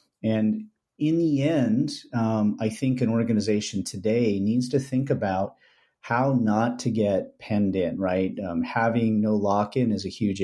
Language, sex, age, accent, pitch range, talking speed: English, male, 40-59, American, 105-120 Hz, 165 wpm